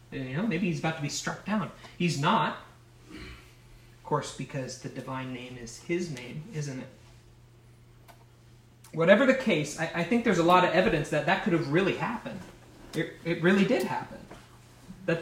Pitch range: 120-190 Hz